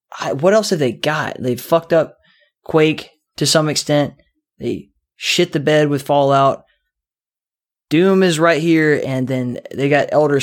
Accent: American